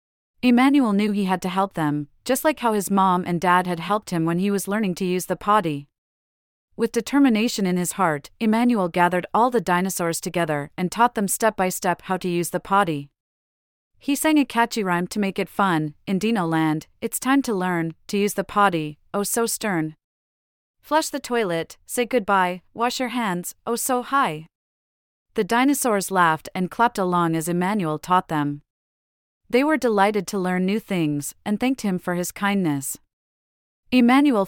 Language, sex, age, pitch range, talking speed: English, female, 30-49, 165-220 Hz, 185 wpm